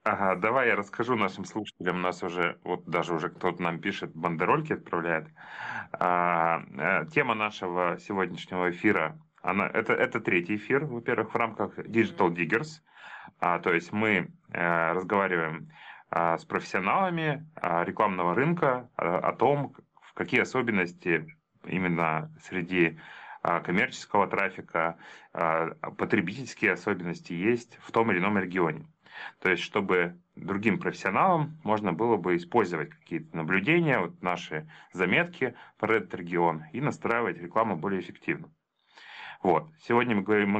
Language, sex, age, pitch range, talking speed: Russian, male, 30-49, 85-110 Hz, 115 wpm